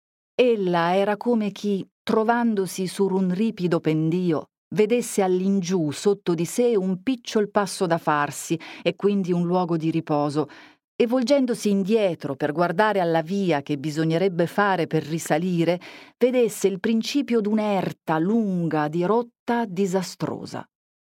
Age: 40-59